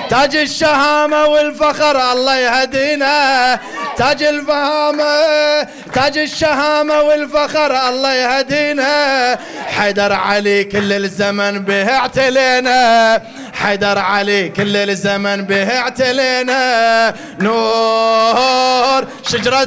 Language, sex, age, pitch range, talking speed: Arabic, male, 30-49, 225-295 Hz, 80 wpm